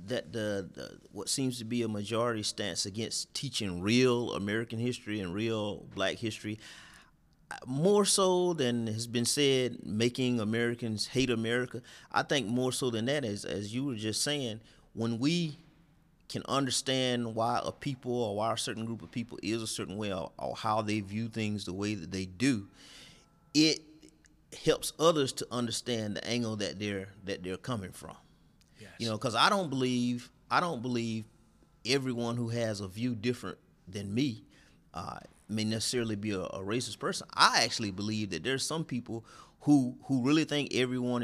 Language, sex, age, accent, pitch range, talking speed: English, male, 30-49, American, 110-130 Hz, 175 wpm